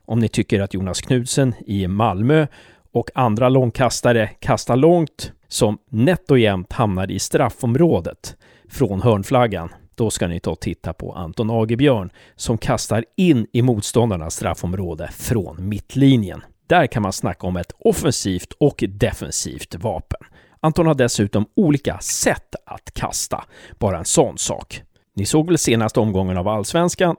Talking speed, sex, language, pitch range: 145 wpm, male, Swedish, 100-135 Hz